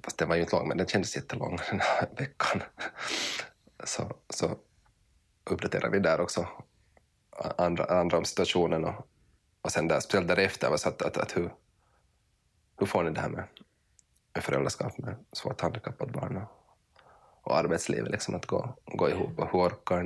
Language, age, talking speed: Finnish, 20-39, 160 wpm